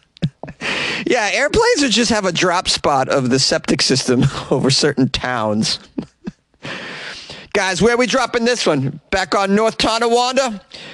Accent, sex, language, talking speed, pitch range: American, male, English, 145 wpm, 125-170 Hz